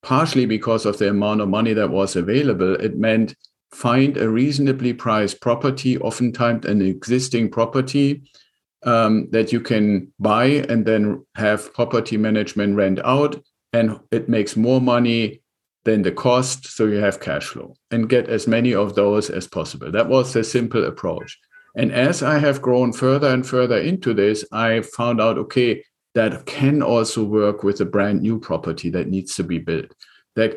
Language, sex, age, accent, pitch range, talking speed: English, male, 50-69, German, 105-125 Hz, 175 wpm